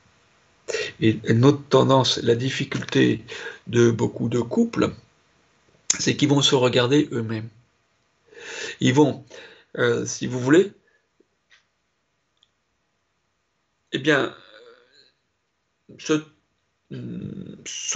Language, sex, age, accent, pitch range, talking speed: French, male, 60-79, French, 125-205 Hz, 80 wpm